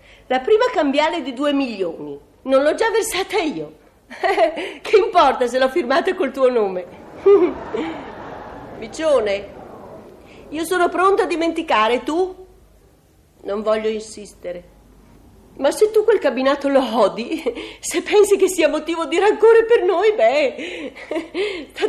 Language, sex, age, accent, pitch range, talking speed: Italian, female, 40-59, native, 265-375 Hz, 130 wpm